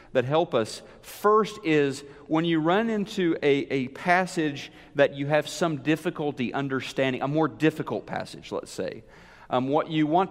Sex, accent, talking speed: male, American, 165 wpm